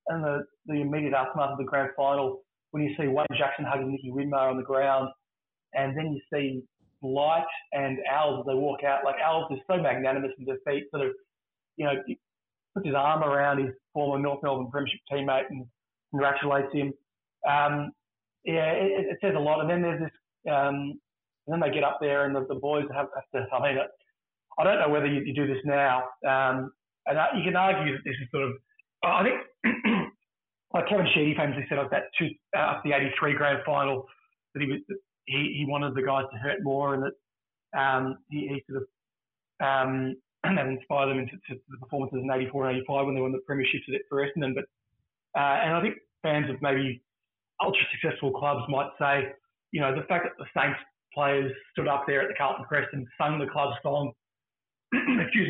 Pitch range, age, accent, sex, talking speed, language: 135-150 Hz, 30-49, Australian, male, 210 wpm, English